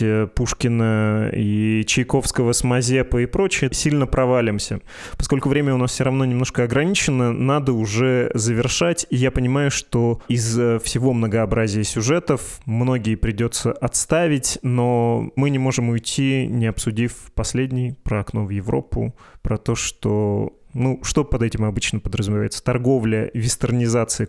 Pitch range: 110-130 Hz